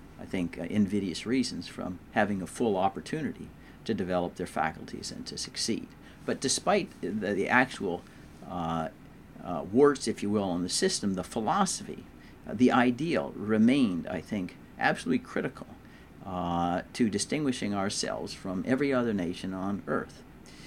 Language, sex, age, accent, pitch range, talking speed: English, male, 50-69, American, 95-130 Hz, 150 wpm